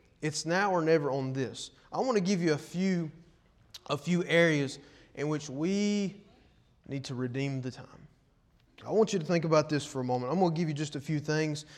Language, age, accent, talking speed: English, 30-49, American, 220 wpm